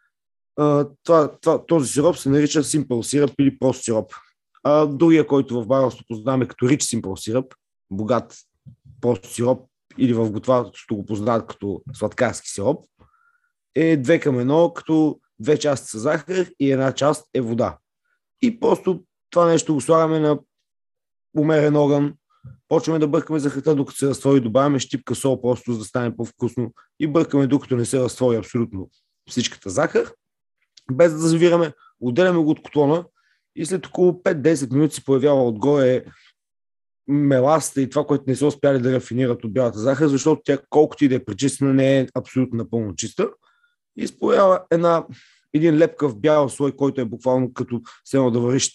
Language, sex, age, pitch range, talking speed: Bulgarian, male, 30-49, 120-155 Hz, 160 wpm